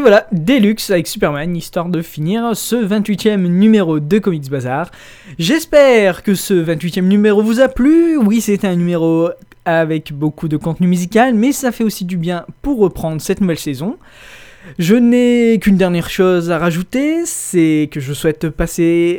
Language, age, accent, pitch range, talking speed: French, 20-39, French, 160-215 Hz, 170 wpm